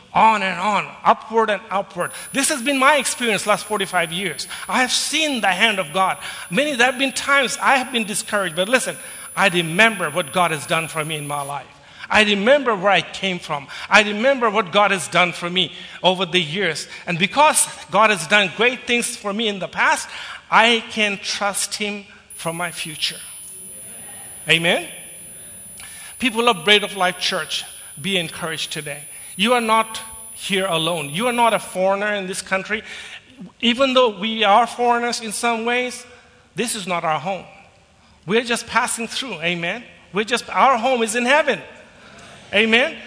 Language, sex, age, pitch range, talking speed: English, male, 50-69, 185-235 Hz, 180 wpm